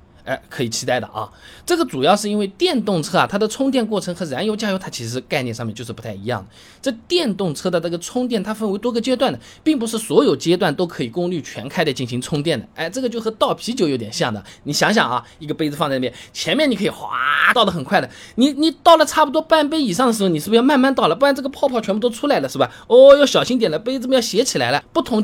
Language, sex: Chinese, male